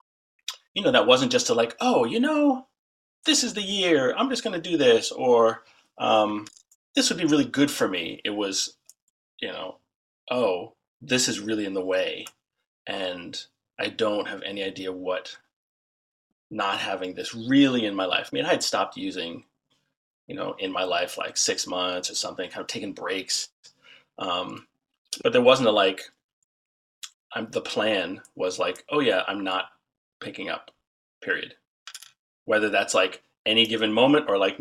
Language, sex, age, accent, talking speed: English, male, 30-49, American, 175 wpm